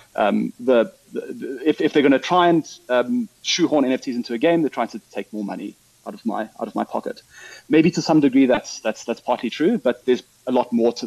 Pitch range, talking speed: 115-155 Hz, 240 wpm